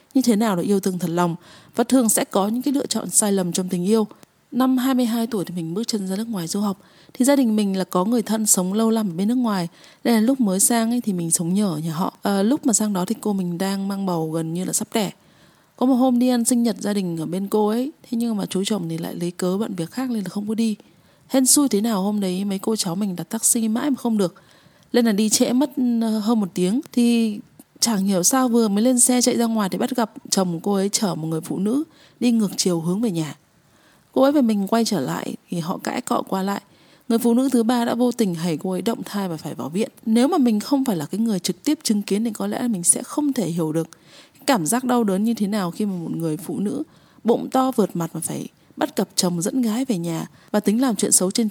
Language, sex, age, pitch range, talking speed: Vietnamese, female, 20-39, 185-240 Hz, 280 wpm